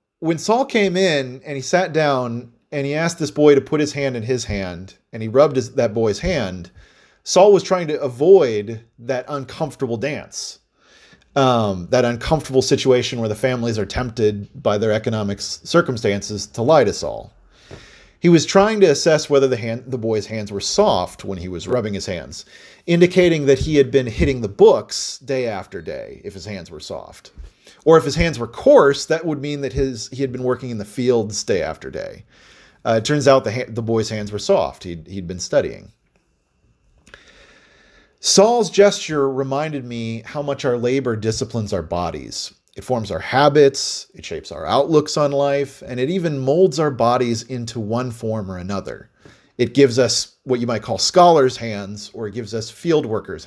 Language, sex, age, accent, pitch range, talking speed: English, male, 40-59, American, 110-145 Hz, 190 wpm